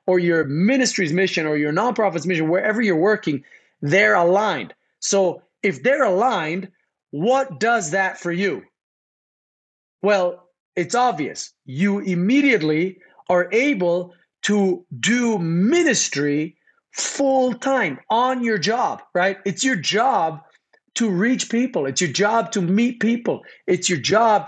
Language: English